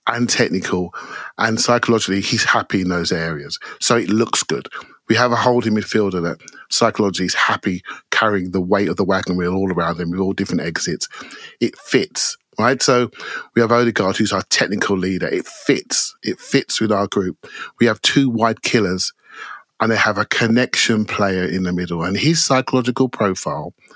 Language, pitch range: English, 95-125 Hz